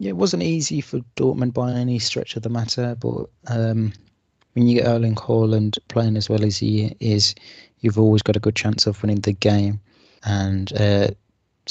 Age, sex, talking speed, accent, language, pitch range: 20-39, male, 190 wpm, British, English, 105-115 Hz